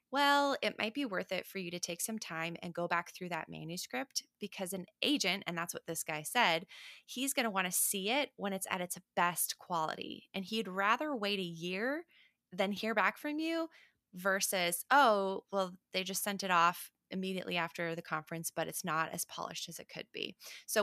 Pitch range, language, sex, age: 185-275 Hz, English, female, 20-39